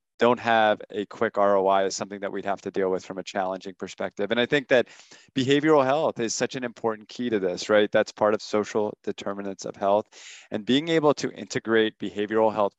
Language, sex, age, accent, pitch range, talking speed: English, male, 30-49, American, 100-115 Hz, 210 wpm